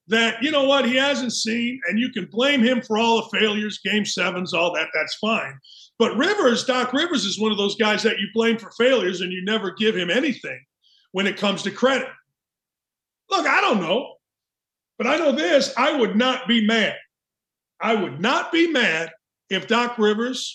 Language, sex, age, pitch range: English, male, 50-69, 215-285 Hz